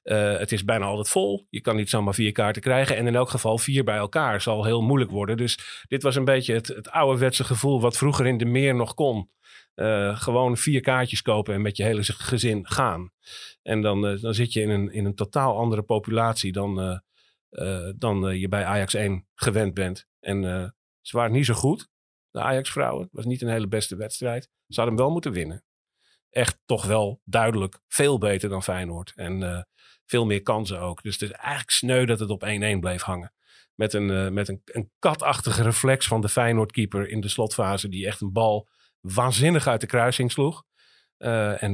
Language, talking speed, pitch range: Dutch, 210 wpm, 100-125 Hz